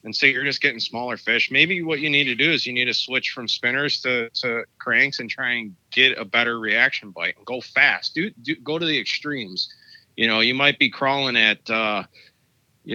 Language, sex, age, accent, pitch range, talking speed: English, male, 30-49, American, 110-130 Hz, 230 wpm